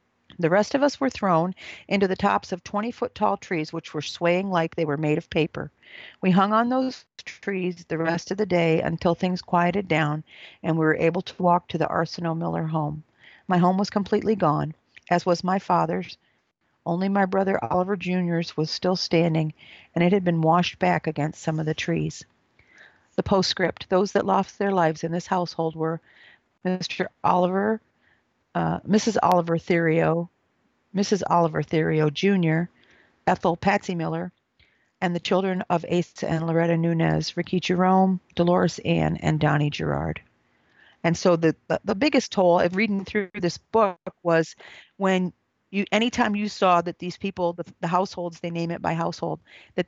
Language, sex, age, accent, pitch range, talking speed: English, female, 50-69, American, 165-190 Hz, 175 wpm